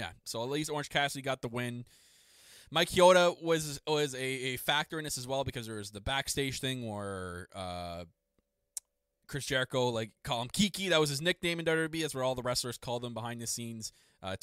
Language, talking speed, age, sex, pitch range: English, 210 wpm, 20-39, male, 105-140 Hz